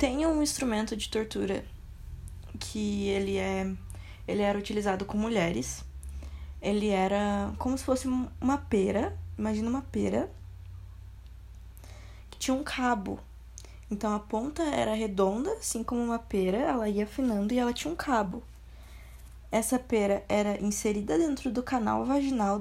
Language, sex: Portuguese, female